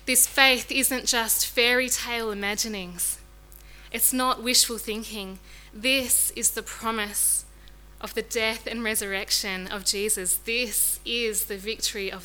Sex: female